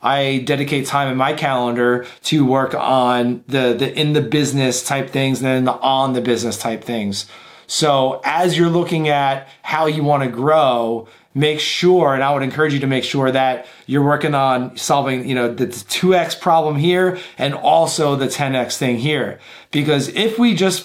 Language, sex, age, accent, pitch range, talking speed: English, male, 30-49, American, 135-160 Hz, 185 wpm